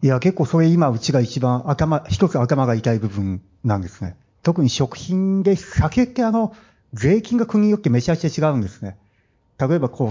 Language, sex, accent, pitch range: Japanese, male, native, 115-185 Hz